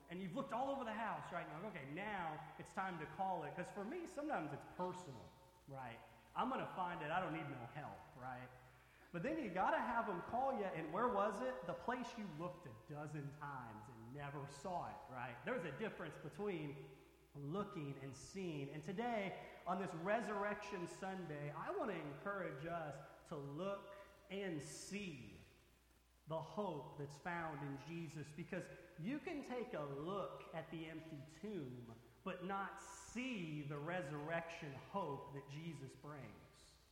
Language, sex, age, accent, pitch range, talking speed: English, male, 30-49, American, 145-195 Hz, 175 wpm